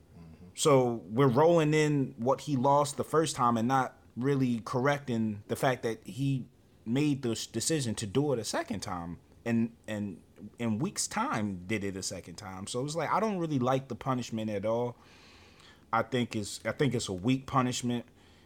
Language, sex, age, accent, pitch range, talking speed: English, male, 20-39, American, 100-130 Hz, 190 wpm